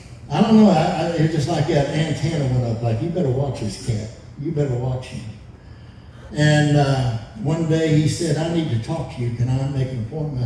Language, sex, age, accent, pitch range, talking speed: English, male, 60-79, American, 115-140 Hz, 230 wpm